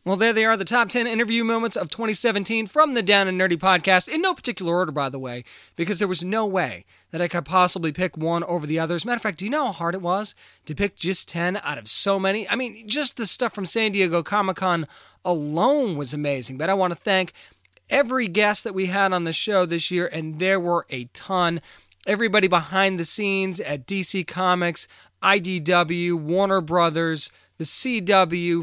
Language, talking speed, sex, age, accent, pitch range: English, 210 wpm, male, 20-39, American, 165-200 Hz